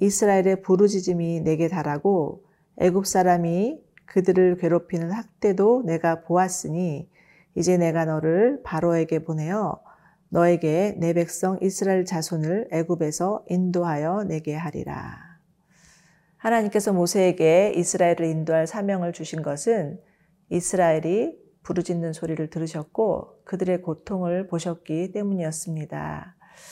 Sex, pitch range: female, 160-190 Hz